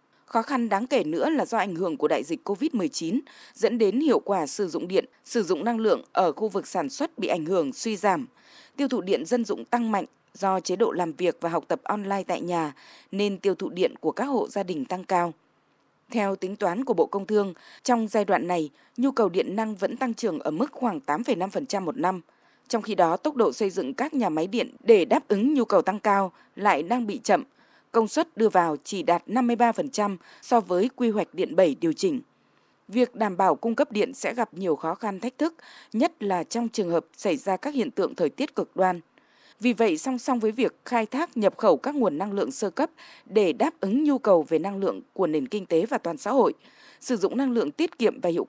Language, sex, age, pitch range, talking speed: Vietnamese, female, 20-39, 190-260 Hz, 235 wpm